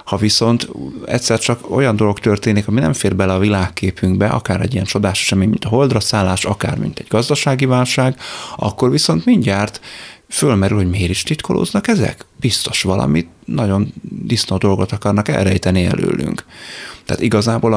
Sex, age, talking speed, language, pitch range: male, 30-49, 155 wpm, Hungarian, 95-115 Hz